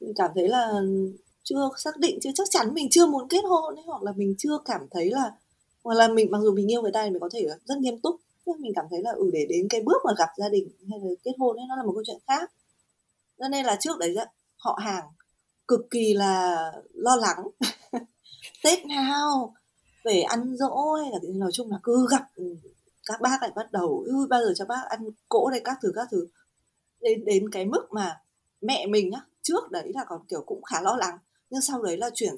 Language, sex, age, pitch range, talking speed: Vietnamese, female, 20-39, 190-270 Hz, 235 wpm